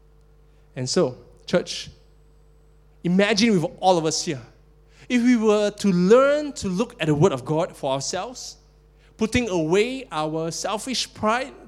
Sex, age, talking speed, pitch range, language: male, 20-39, 145 wpm, 150-180 Hz, English